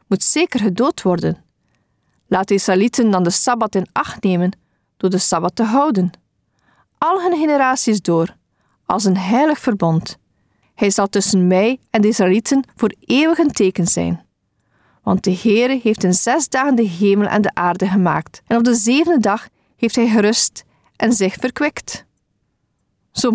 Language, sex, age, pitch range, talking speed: Dutch, female, 40-59, 190-255 Hz, 160 wpm